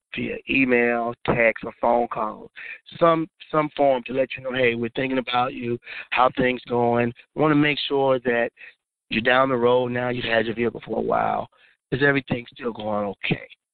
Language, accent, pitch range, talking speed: English, American, 115-130 Hz, 190 wpm